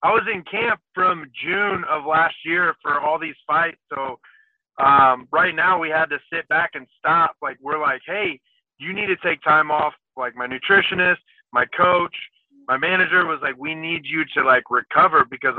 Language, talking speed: English, 195 wpm